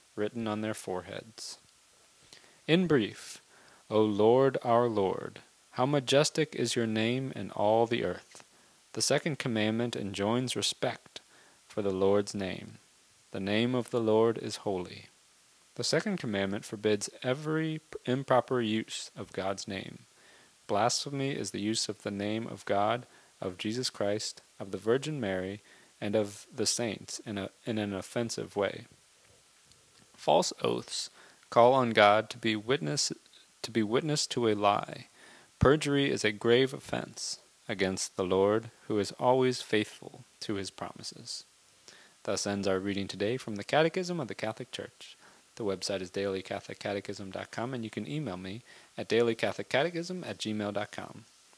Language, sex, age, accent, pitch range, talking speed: English, male, 30-49, American, 100-125 Hz, 145 wpm